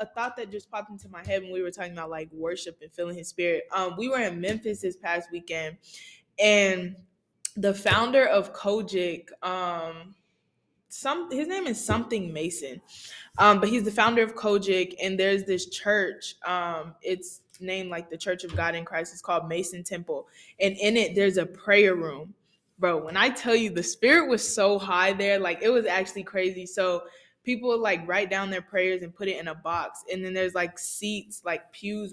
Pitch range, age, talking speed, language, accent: 175-205 Hz, 20-39, 200 wpm, English, American